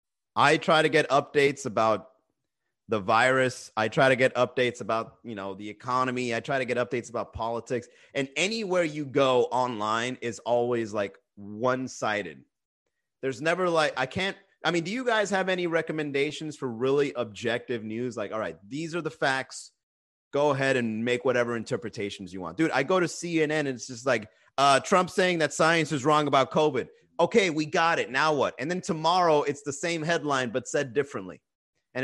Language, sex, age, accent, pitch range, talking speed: English, male, 30-49, American, 125-170 Hz, 190 wpm